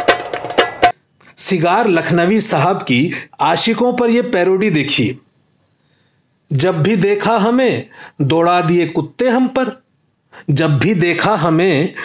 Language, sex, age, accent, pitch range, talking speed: Hindi, male, 40-59, native, 165-220 Hz, 110 wpm